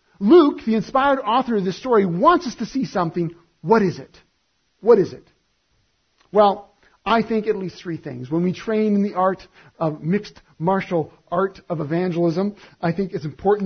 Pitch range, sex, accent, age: 170-235 Hz, male, American, 40-59